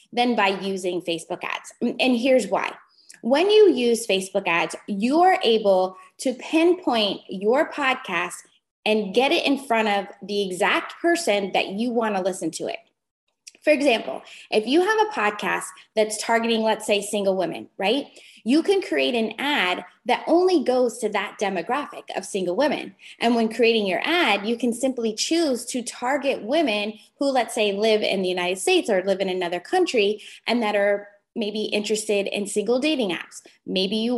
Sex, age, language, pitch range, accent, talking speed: female, 20-39, English, 205-270 Hz, American, 170 wpm